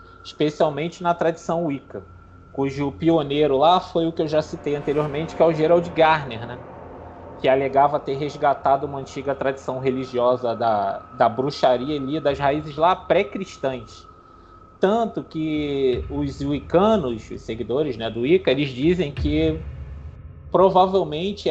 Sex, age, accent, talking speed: male, 20-39, Brazilian, 135 wpm